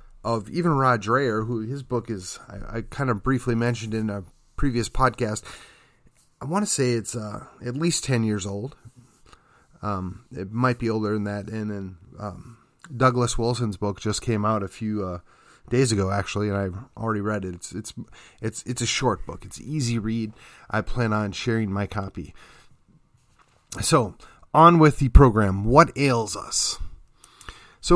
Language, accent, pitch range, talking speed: English, American, 105-135 Hz, 175 wpm